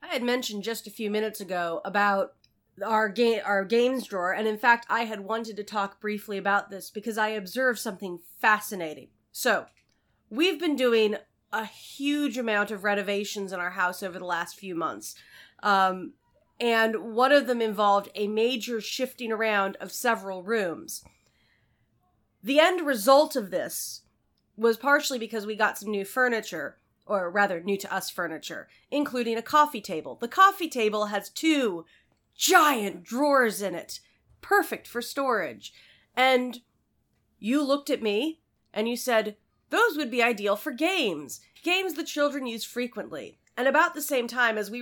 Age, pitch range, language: 30-49, 205-260 Hz, English